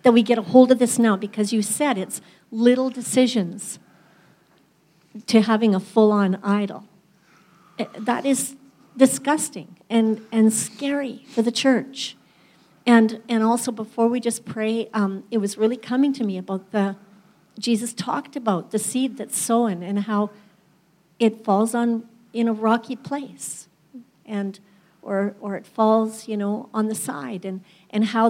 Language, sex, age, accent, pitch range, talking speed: English, female, 60-79, American, 185-230 Hz, 155 wpm